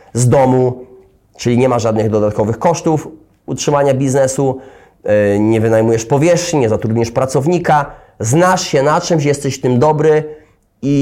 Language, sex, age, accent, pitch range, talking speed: Polish, male, 30-49, native, 120-155 Hz, 130 wpm